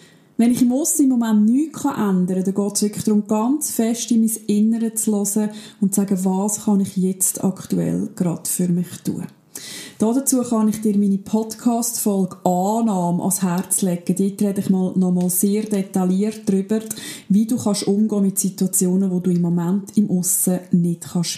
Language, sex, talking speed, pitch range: German, female, 175 wpm, 190-225 Hz